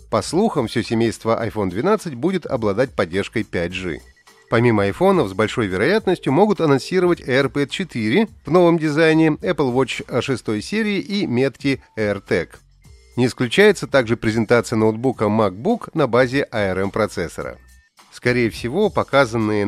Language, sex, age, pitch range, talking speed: Russian, male, 30-49, 105-160 Hz, 125 wpm